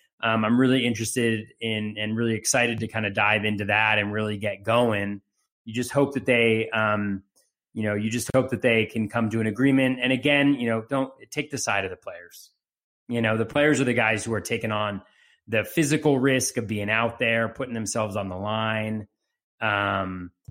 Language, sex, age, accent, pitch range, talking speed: English, male, 30-49, American, 100-120 Hz, 210 wpm